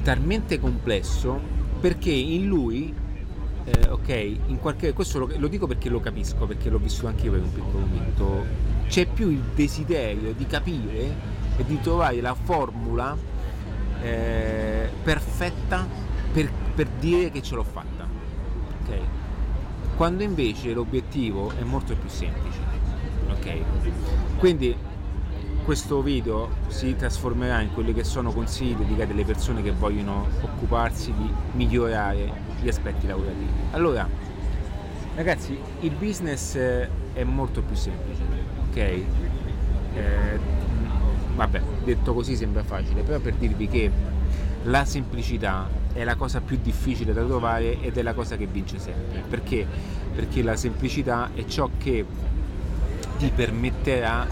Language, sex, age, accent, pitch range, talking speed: Italian, male, 30-49, native, 75-115 Hz, 130 wpm